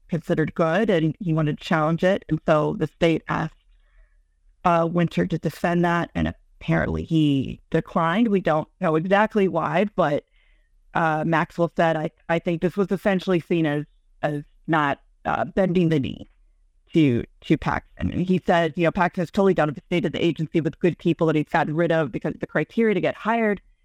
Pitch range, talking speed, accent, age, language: 155-185 Hz, 195 wpm, American, 40-59, English